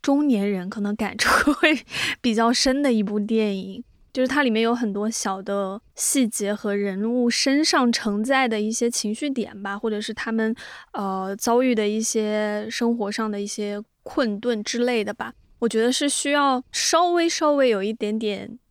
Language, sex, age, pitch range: Chinese, female, 20-39, 205-245 Hz